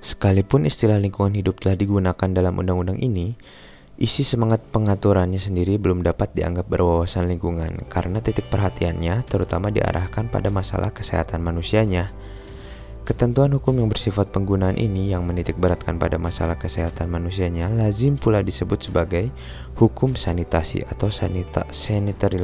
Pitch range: 90-105 Hz